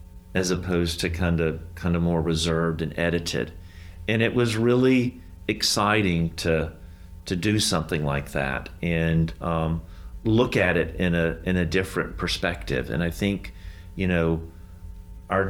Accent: American